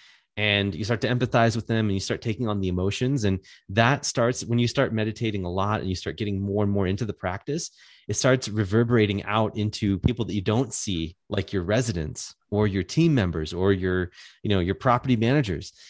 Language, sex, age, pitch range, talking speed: English, male, 30-49, 100-125 Hz, 215 wpm